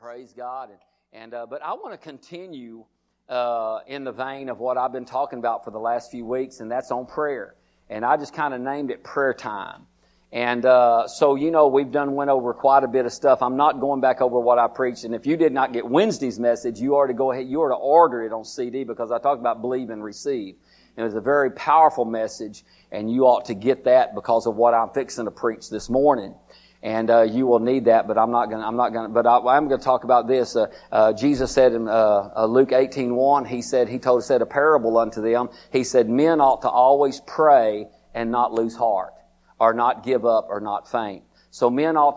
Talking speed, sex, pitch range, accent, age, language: 240 wpm, male, 115-135 Hz, American, 50-69, English